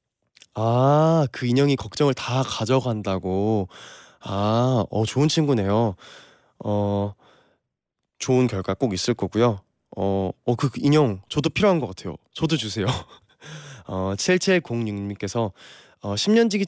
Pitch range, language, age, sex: 105-150 Hz, Korean, 20-39, male